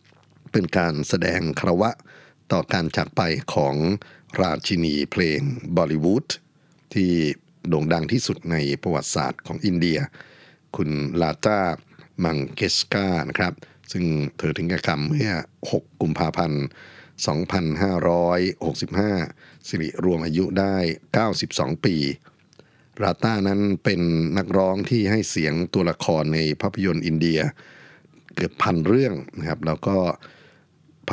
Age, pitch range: 60-79, 80-100 Hz